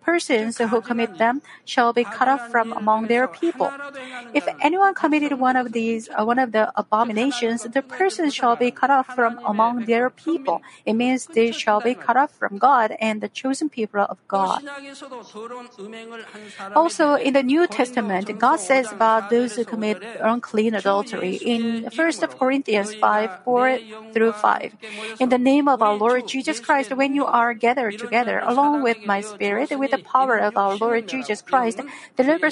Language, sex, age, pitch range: Korean, female, 40-59, 215-265 Hz